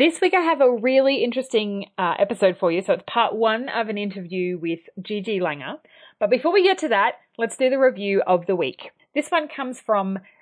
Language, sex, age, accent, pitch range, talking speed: English, female, 30-49, Australian, 185-260 Hz, 220 wpm